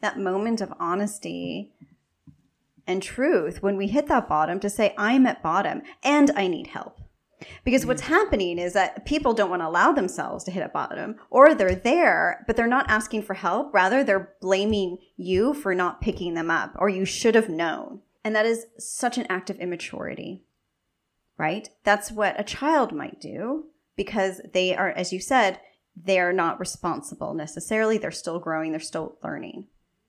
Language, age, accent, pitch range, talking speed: English, 20-39, American, 185-235 Hz, 180 wpm